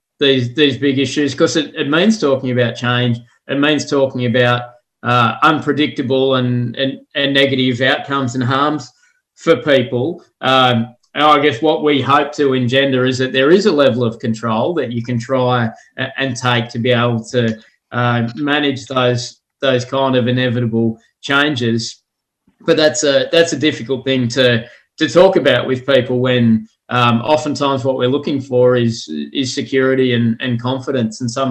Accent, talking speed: Australian, 170 wpm